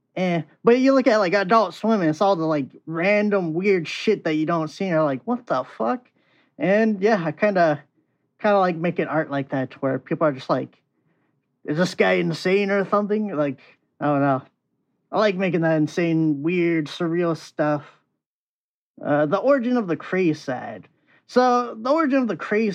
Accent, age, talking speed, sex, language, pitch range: American, 20-39, 195 wpm, male, English, 155-210 Hz